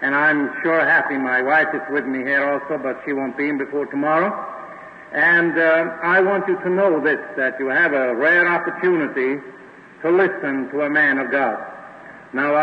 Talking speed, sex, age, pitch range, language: 190 wpm, male, 60-79, 150-195 Hz, English